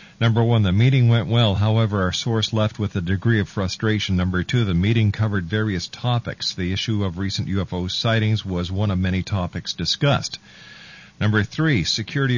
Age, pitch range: 50-69, 100-115 Hz